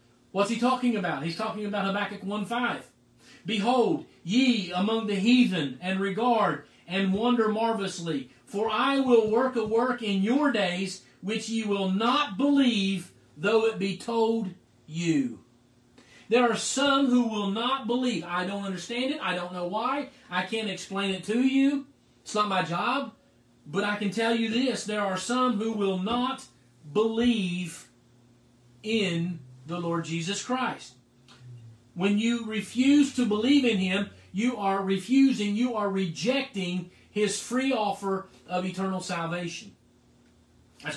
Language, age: English, 40-59